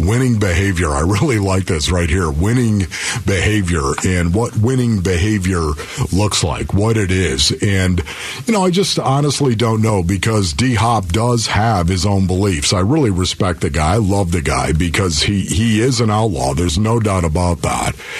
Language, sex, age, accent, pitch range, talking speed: English, male, 50-69, American, 90-115 Hz, 180 wpm